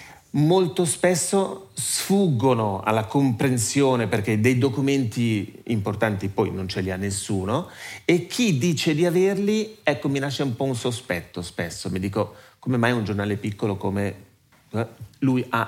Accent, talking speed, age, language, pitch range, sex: native, 150 wpm, 40-59, Italian, 105-135 Hz, male